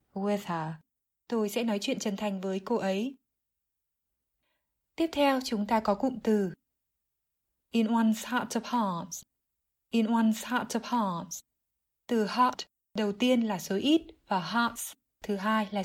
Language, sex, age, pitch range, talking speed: Vietnamese, female, 20-39, 195-230 Hz, 150 wpm